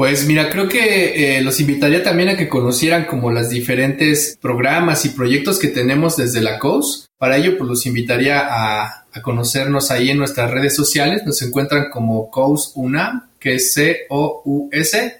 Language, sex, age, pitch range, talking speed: Spanish, male, 30-49, 130-165 Hz, 165 wpm